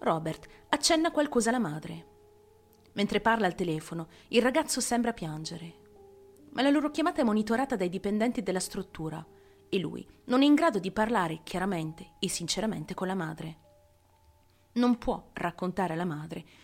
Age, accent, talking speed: 30-49, native, 150 wpm